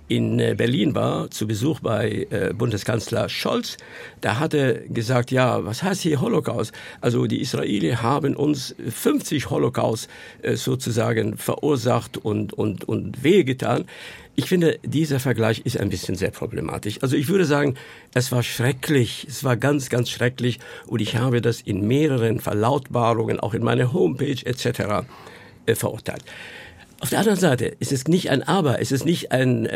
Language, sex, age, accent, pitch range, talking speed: German, male, 50-69, German, 115-145 Hz, 165 wpm